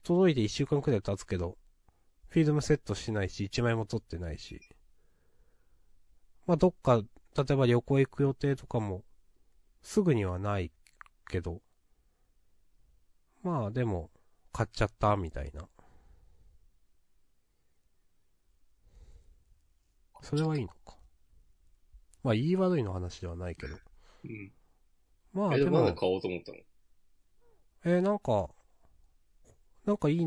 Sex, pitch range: male, 85-140 Hz